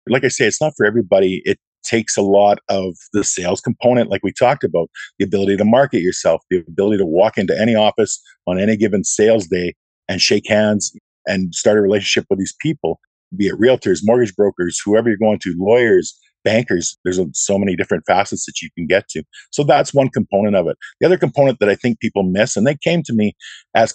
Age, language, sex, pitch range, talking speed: 50-69, English, male, 95-110 Hz, 220 wpm